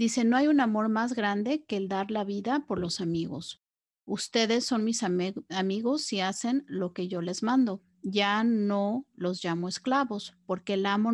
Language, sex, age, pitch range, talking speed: Spanish, female, 40-59, 190-235 Hz, 185 wpm